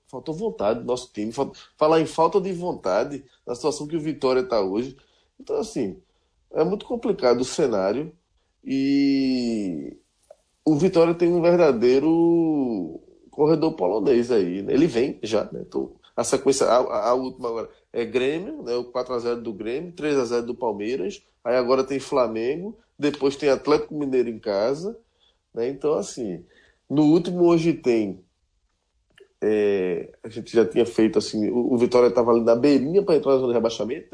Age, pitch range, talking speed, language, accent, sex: 20-39, 120-155 Hz, 165 wpm, Portuguese, Brazilian, male